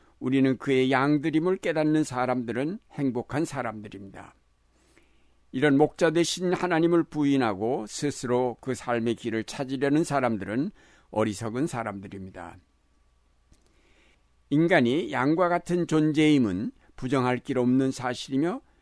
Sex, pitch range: male, 110-145 Hz